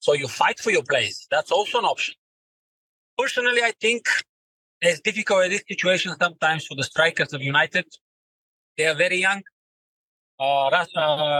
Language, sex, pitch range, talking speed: English, male, 170-215 Hz, 155 wpm